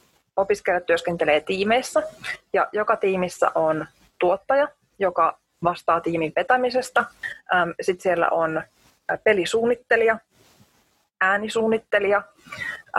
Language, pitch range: Finnish, 180-225 Hz